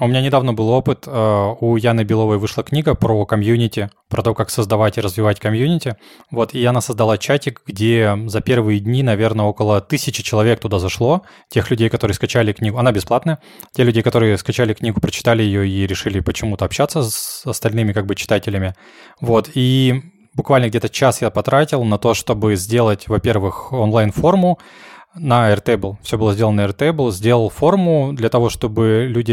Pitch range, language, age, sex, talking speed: 105-130 Hz, Russian, 20-39, male, 165 wpm